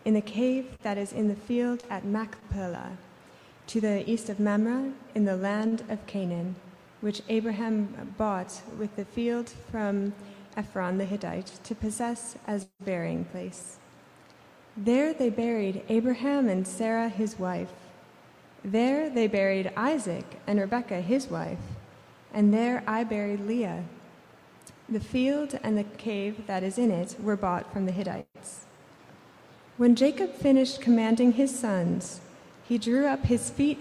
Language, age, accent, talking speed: English, 20-39, American, 145 wpm